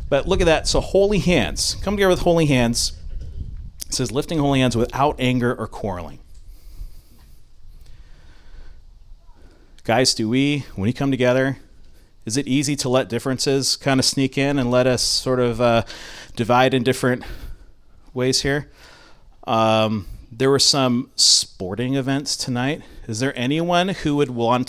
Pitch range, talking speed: 110-155 Hz, 150 wpm